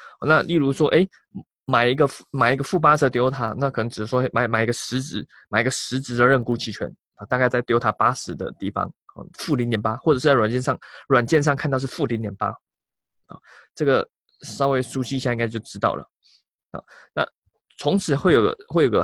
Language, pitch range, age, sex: Chinese, 125-165 Hz, 20-39, male